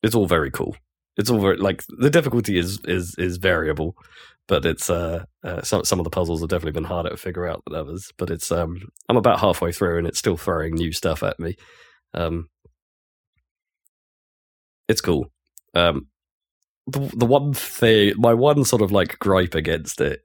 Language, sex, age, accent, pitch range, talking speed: English, male, 20-39, British, 80-95 Hz, 185 wpm